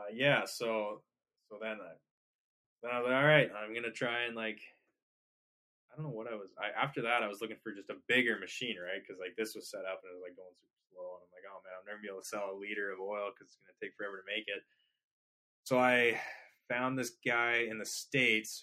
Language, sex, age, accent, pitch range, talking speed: English, male, 20-39, American, 105-130 Hz, 265 wpm